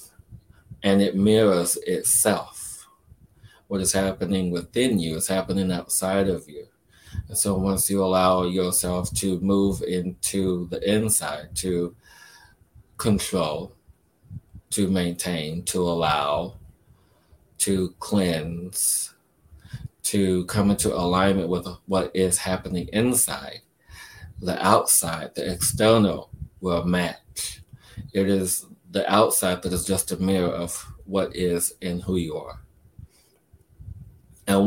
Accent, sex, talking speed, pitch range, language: American, male, 115 wpm, 90-100 Hz, English